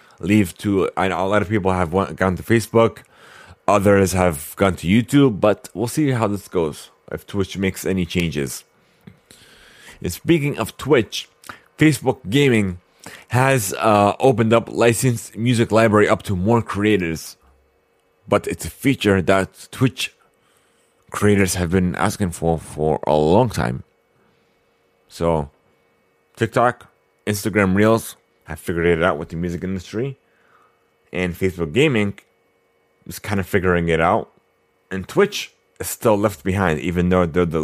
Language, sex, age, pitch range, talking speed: English, male, 30-49, 85-105 Hz, 140 wpm